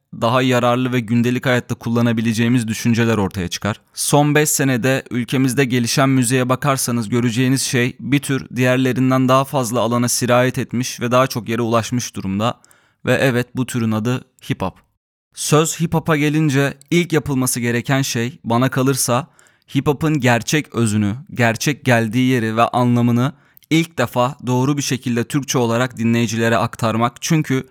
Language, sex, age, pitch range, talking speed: Turkish, male, 30-49, 120-135 Hz, 145 wpm